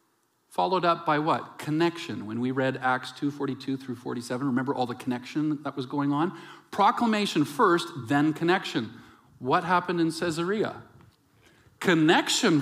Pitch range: 120-160 Hz